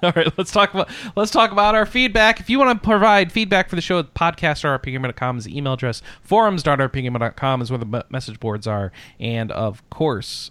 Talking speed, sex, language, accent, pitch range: 195 wpm, male, English, American, 120-180 Hz